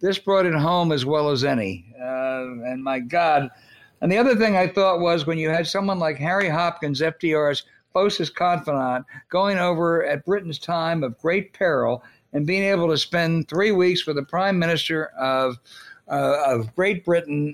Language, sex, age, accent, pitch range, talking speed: English, male, 60-79, American, 135-180 Hz, 180 wpm